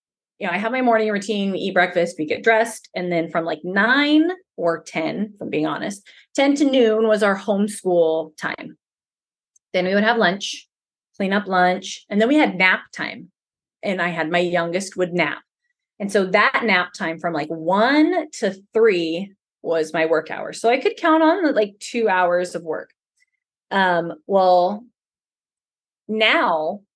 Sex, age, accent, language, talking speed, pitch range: female, 20-39, American, English, 175 wpm, 175-235 Hz